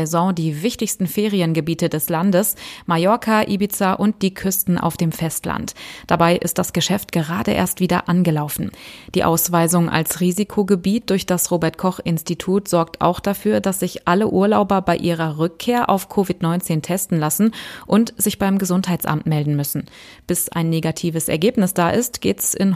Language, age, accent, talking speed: German, 30-49, German, 150 wpm